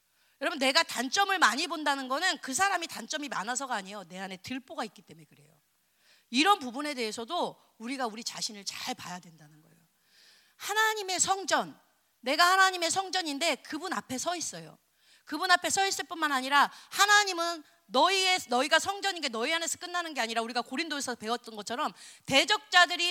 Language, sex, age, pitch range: Korean, female, 30-49, 230-350 Hz